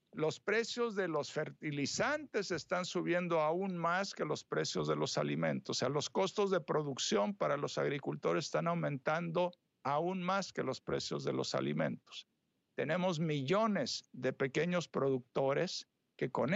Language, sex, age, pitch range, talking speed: Spanish, male, 60-79, 130-180 Hz, 150 wpm